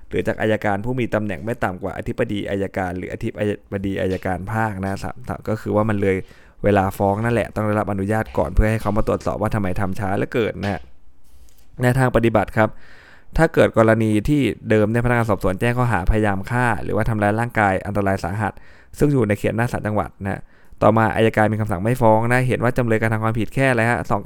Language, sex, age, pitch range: Thai, male, 20-39, 100-120 Hz